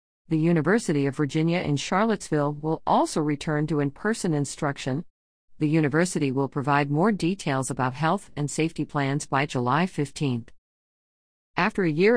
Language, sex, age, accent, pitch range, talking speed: English, female, 50-69, American, 145-195 Hz, 145 wpm